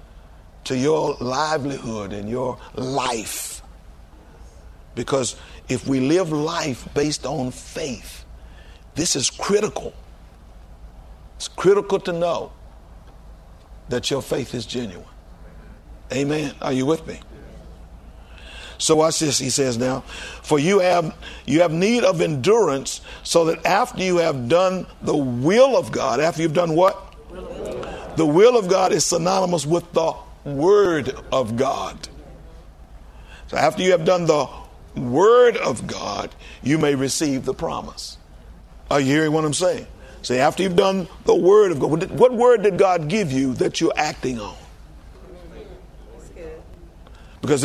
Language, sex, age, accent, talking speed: English, male, 60-79, American, 135 wpm